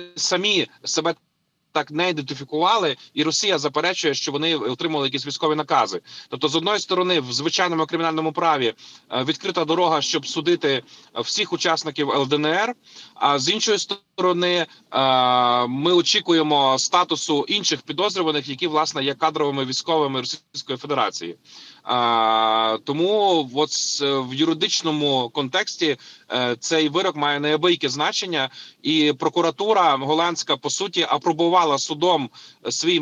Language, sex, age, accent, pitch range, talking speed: Ukrainian, male, 20-39, native, 140-175 Hz, 115 wpm